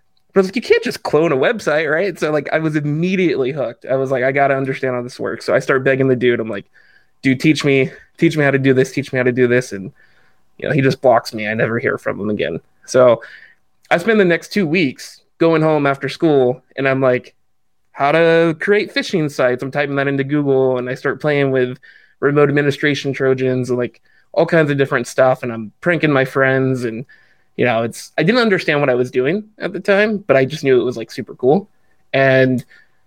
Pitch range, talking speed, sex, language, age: 130-155 Hz, 230 wpm, male, English, 20-39